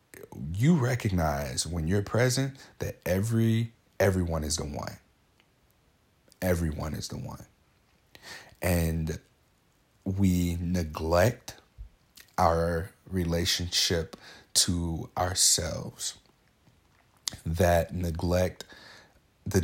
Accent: American